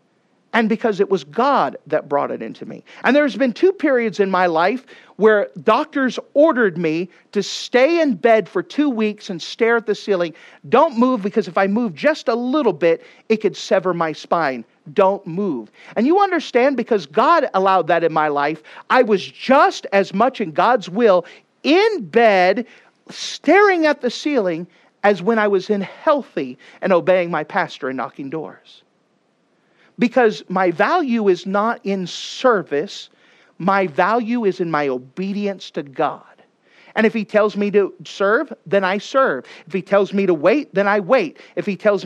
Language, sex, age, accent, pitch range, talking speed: English, male, 40-59, American, 185-240 Hz, 180 wpm